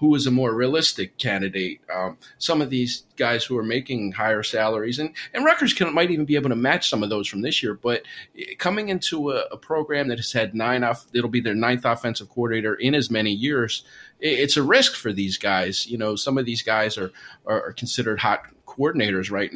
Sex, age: male, 30-49